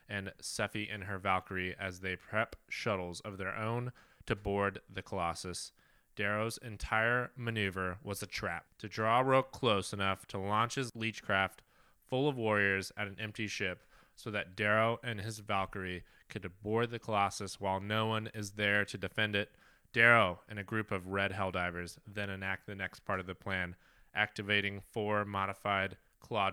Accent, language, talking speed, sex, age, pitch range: American, English, 170 wpm, male, 20-39, 95-110 Hz